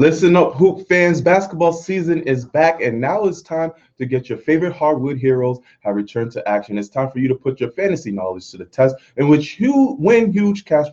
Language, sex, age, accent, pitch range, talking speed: English, male, 20-39, American, 115-155 Hz, 220 wpm